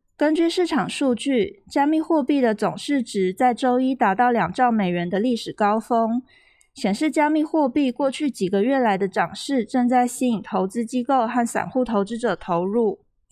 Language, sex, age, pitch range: Chinese, female, 20-39, 220-275 Hz